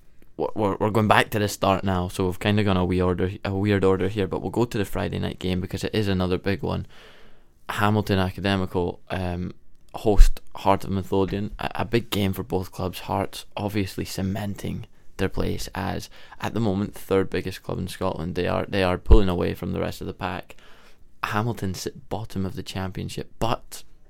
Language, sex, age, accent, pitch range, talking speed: English, male, 20-39, British, 95-105 Hz, 195 wpm